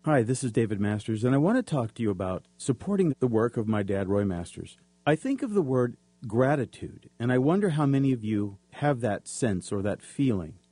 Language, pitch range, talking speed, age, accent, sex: English, 110-150 Hz, 225 wpm, 50-69, American, male